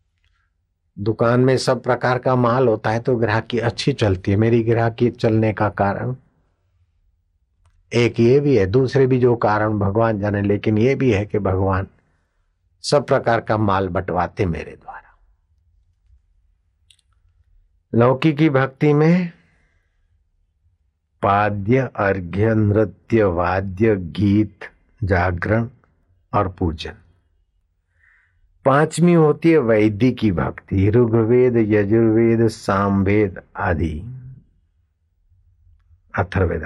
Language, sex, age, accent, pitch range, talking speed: Hindi, male, 60-79, native, 85-115 Hz, 105 wpm